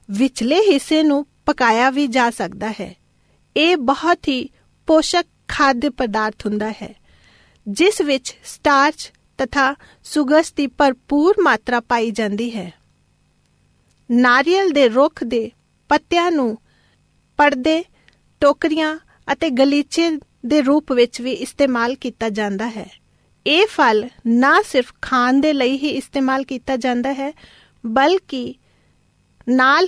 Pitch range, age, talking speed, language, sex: 245-305 Hz, 40-59, 100 wpm, Punjabi, female